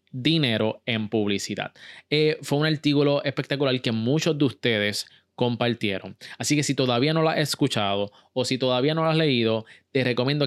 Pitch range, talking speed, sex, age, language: 110-145 Hz, 170 wpm, male, 20-39, Spanish